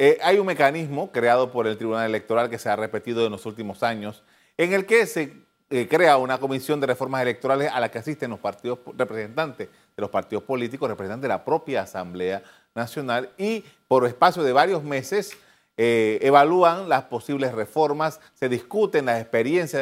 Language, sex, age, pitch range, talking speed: Spanish, male, 40-59, 125-195 Hz, 180 wpm